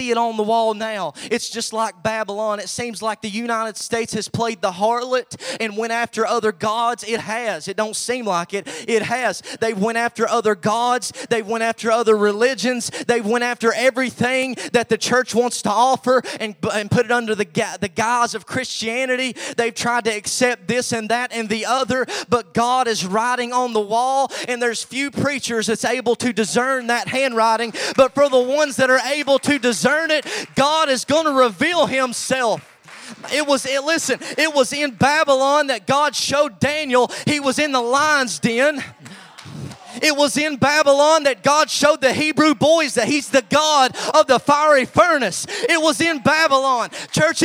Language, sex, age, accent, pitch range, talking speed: English, male, 30-49, American, 225-280 Hz, 185 wpm